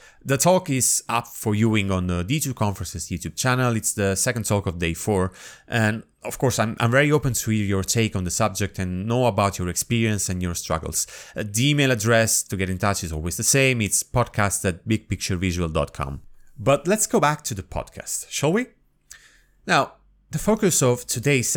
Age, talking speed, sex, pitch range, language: 30-49, 195 wpm, male, 90-135 Hz, English